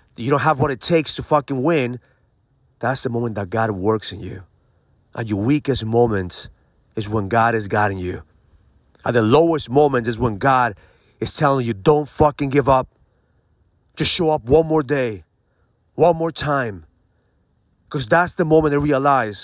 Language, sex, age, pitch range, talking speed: English, male, 30-49, 95-140 Hz, 175 wpm